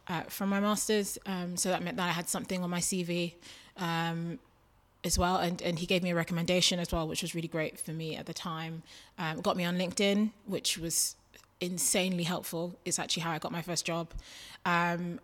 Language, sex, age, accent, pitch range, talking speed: English, female, 20-39, British, 170-190 Hz, 215 wpm